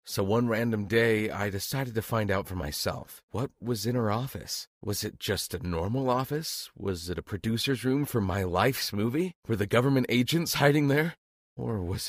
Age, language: 40-59, English